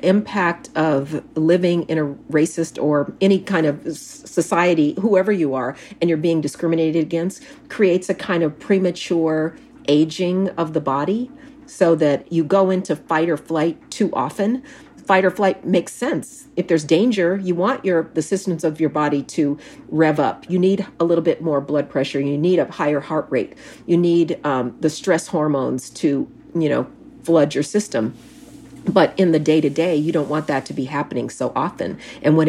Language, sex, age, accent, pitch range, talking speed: English, female, 40-59, American, 155-190 Hz, 180 wpm